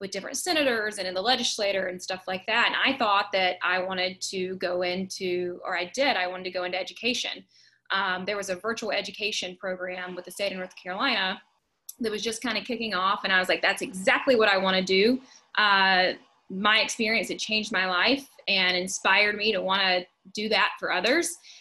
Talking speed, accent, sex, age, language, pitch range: 215 wpm, American, female, 20-39, English, 190-255 Hz